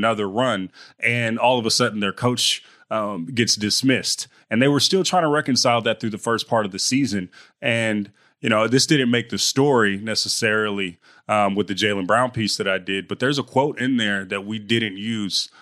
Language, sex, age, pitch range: English, male, 30-49, 105-125 Hz